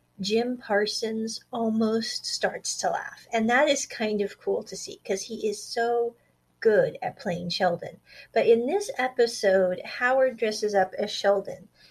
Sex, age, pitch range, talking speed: female, 40-59, 195-235 Hz, 155 wpm